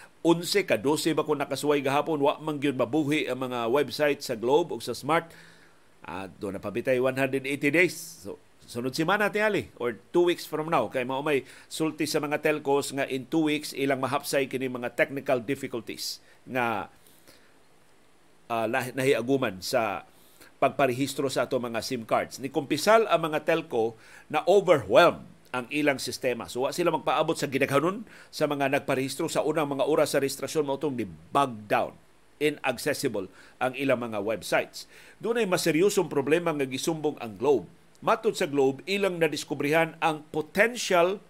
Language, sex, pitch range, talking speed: Filipino, male, 135-165 Hz, 160 wpm